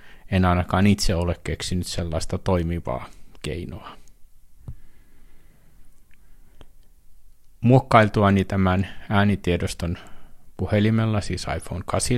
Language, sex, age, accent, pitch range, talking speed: Finnish, male, 50-69, native, 90-110 Hz, 70 wpm